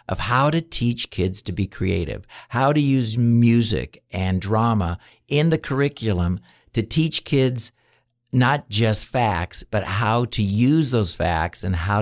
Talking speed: 155 wpm